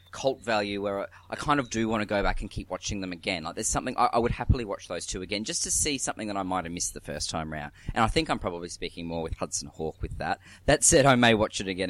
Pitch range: 90-115 Hz